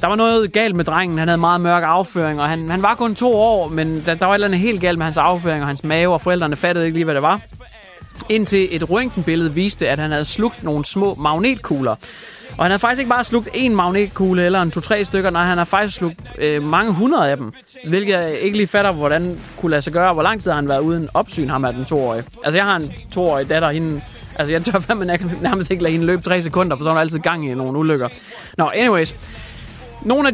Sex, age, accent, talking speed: male, 20-39, Danish, 255 wpm